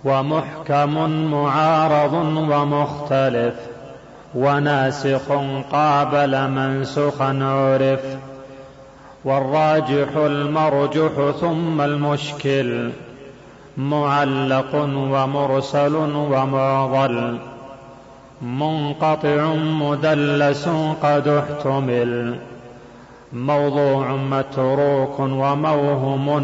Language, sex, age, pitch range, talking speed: Arabic, male, 40-59, 135-145 Hz, 50 wpm